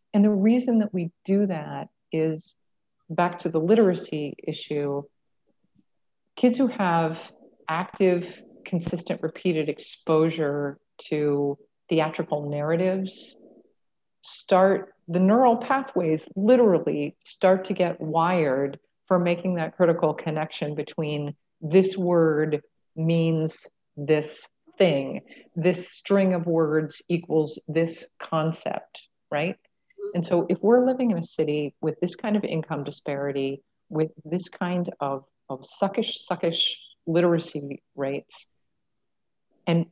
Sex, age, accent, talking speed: female, 40-59, American, 115 wpm